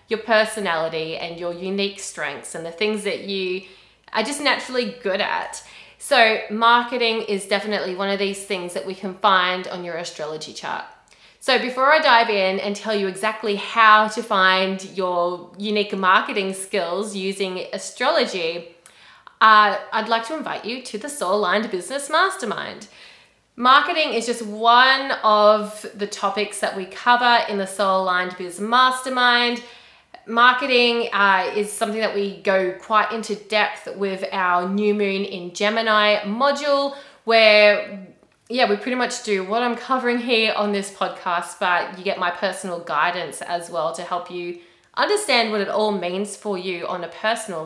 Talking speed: 160 wpm